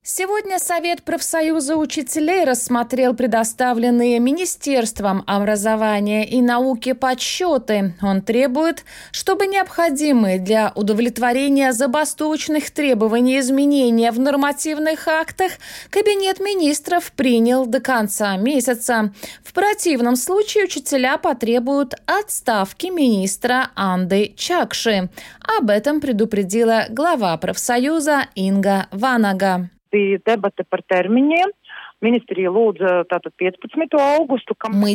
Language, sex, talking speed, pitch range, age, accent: Russian, female, 80 wpm, 210-300 Hz, 20-39, native